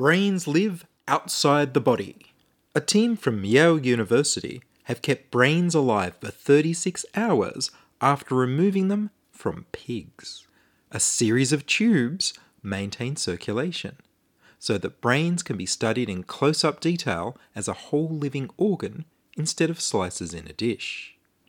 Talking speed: 135 wpm